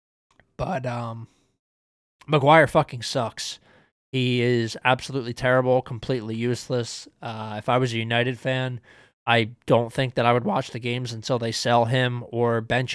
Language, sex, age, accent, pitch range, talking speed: English, male, 20-39, American, 120-135 Hz, 155 wpm